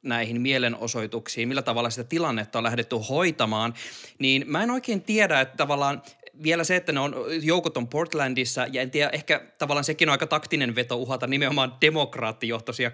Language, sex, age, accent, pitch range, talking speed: Finnish, male, 20-39, native, 120-155 Hz, 165 wpm